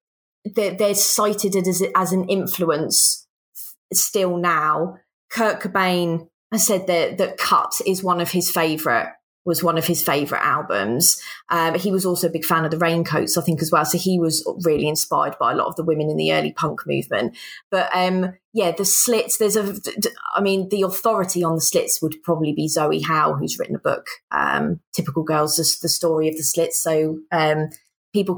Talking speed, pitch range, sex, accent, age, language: 190 wpm, 165-195 Hz, female, British, 20-39, English